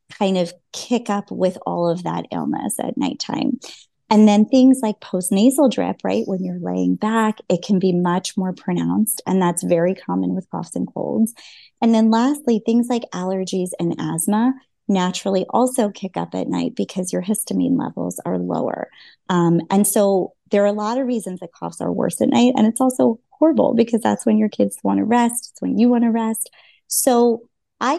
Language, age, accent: English, 30-49, American